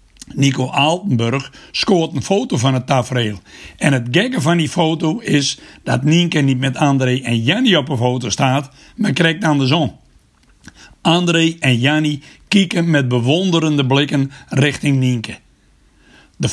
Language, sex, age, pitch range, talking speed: Dutch, male, 60-79, 130-165 Hz, 150 wpm